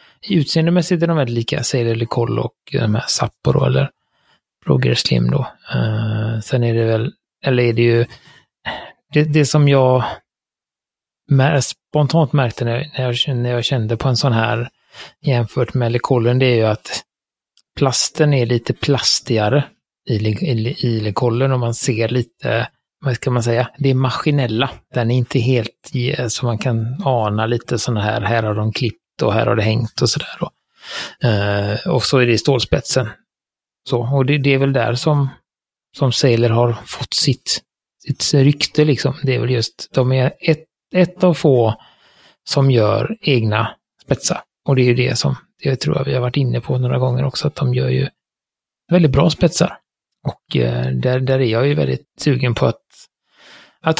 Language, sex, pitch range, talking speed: Swedish, male, 115-140 Hz, 180 wpm